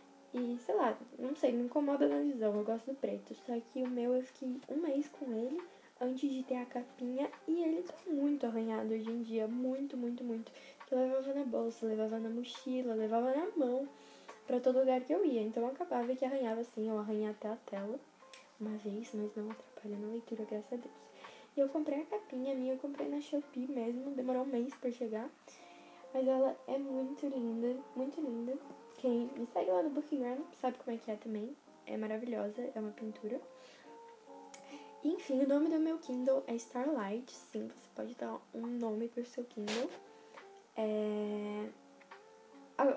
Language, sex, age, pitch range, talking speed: Portuguese, female, 10-29, 220-270 Hz, 190 wpm